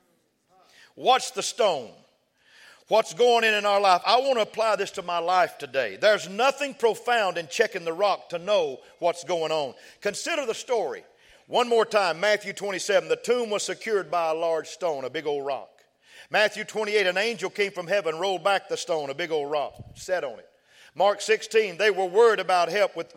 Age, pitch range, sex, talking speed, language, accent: 50-69, 175-225 Hz, male, 195 wpm, English, American